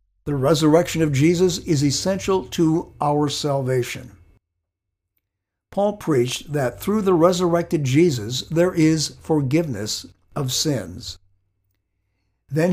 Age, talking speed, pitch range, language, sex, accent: 60-79, 105 wpm, 105-170 Hz, English, male, American